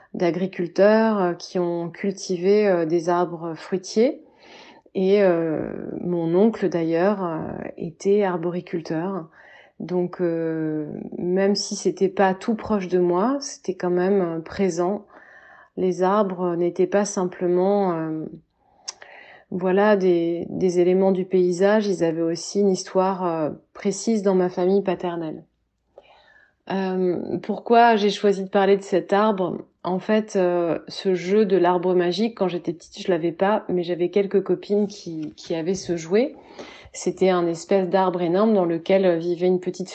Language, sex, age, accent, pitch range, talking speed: French, female, 30-49, French, 175-200 Hz, 140 wpm